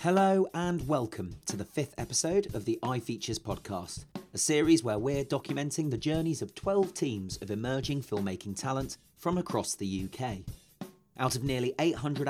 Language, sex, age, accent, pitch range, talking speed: English, male, 30-49, British, 105-155 Hz, 160 wpm